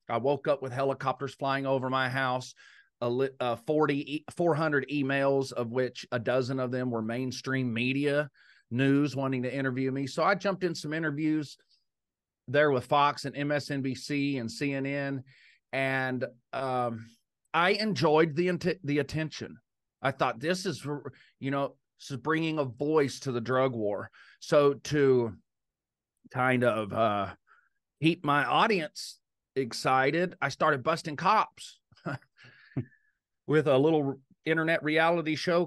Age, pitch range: 40-59, 130-160 Hz